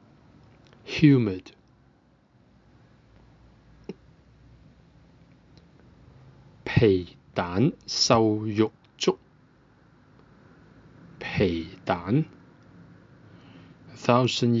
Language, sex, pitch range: English, male, 110-145 Hz